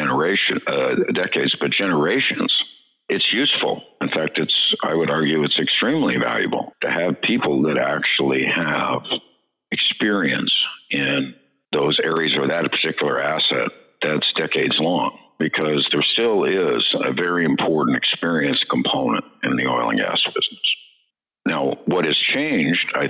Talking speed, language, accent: 130 wpm, English, American